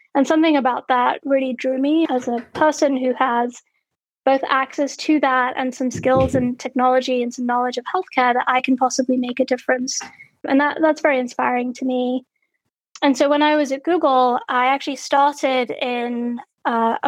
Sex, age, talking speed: female, 20-39, 185 wpm